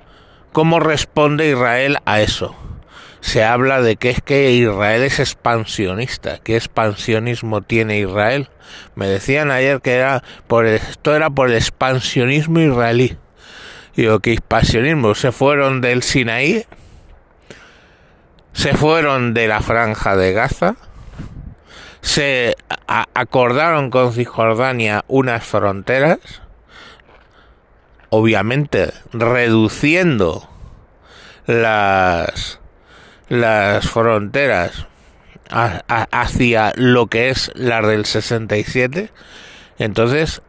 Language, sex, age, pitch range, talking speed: Spanish, male, 60-79, 110-135 Hz, 95 wpm